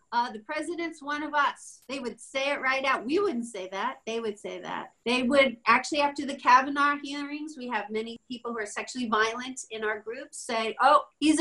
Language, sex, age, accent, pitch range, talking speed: English, female, 40-59, American, 215-285 Hz, 215 wpm